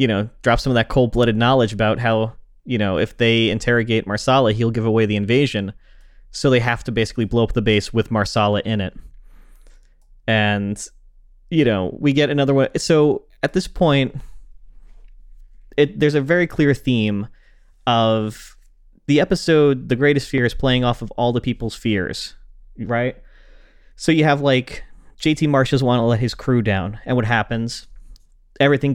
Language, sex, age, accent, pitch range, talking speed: English, male, 30-49, American, 110-130 Hz, 170 wpm